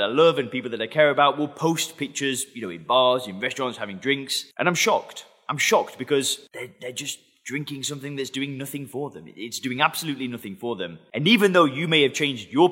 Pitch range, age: 125-155 Hz, 20-39